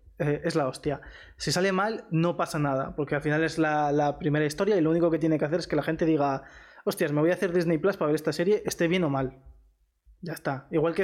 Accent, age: Spanish, 20-39